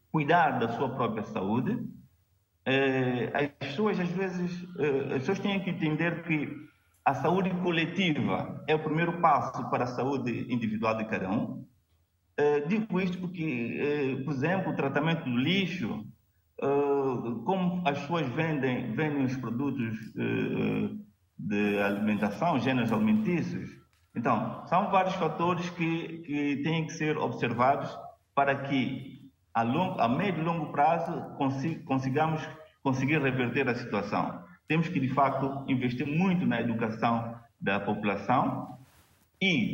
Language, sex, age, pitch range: Portuguese, male, 50-69, 120-160 Hz